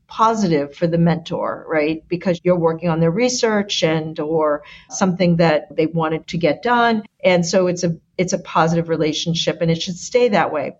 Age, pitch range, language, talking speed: 50-69, 170-220 Hz, English, 190 wpm